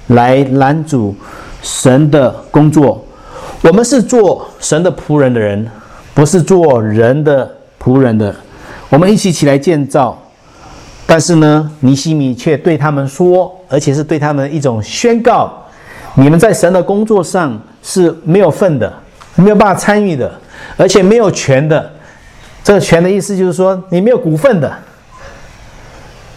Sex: male